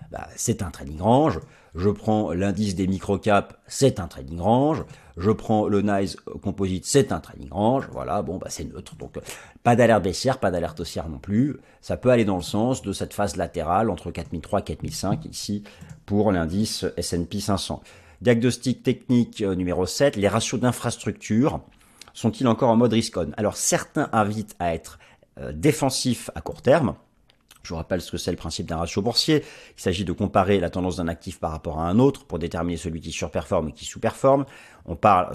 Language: French